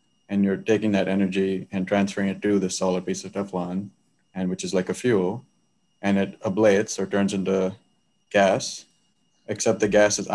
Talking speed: 180 wpm